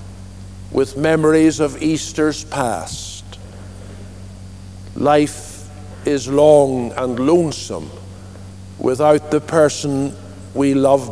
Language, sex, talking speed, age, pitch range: English, male, 80 wpm, 60-79, 95-145 Hz